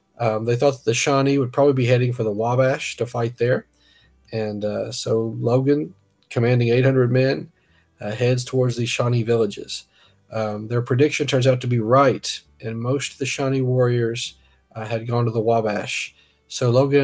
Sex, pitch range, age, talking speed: male, 110-130 Hz, 40-59, 175 wpm